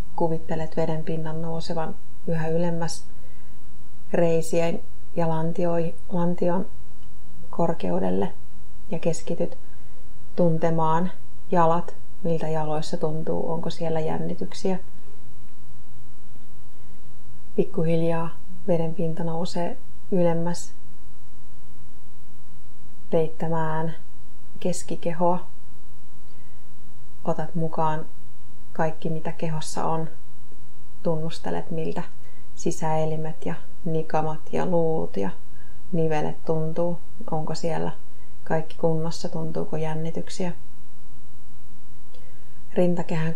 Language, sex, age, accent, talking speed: Finnish, female, 30-49, native, 70 wpm